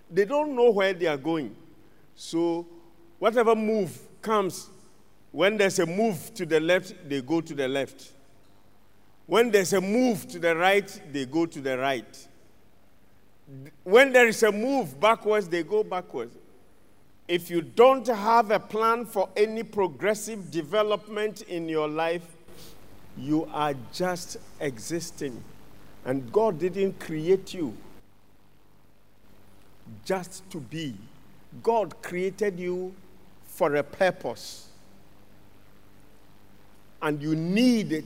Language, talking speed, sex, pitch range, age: English, 125 wpm, male, 125-205 Hz, 50-69